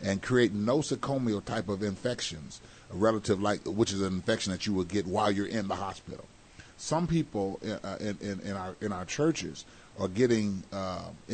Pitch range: 95-130 Hz